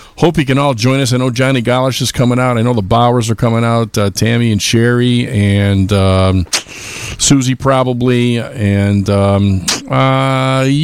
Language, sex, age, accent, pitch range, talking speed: English, male, 50-69, American, 105-145 Hz, 170 wpm